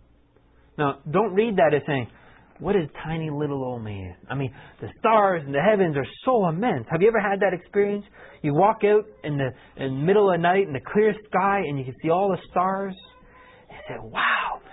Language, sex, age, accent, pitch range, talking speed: English, male, 30-49, American, 135-185 Hz, 215 wpm